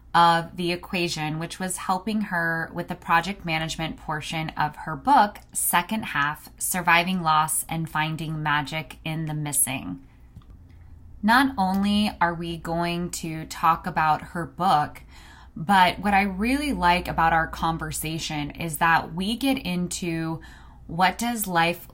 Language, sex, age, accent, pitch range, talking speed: English, female, 20-39, American, 160-185 Hz, 140 wpm